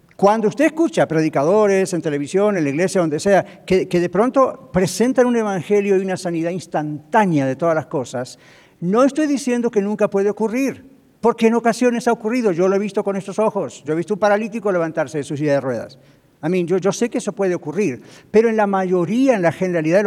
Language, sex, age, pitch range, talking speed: English, male, 60-79, 160-225 Hz, 220 wpm